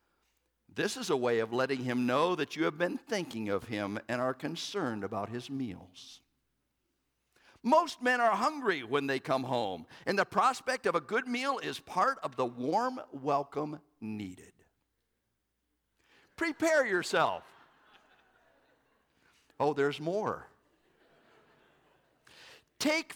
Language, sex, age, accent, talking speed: English, male, 50-69, American, 125 wpm